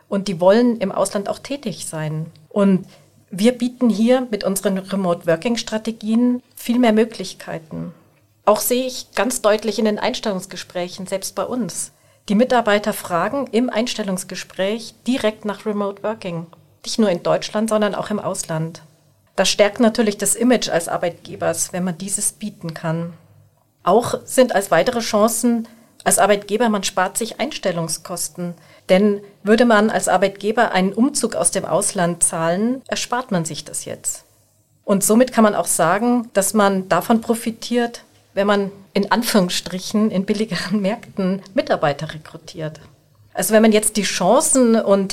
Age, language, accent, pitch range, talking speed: 40-59, German, German, 180-225 Hz, 145 wpm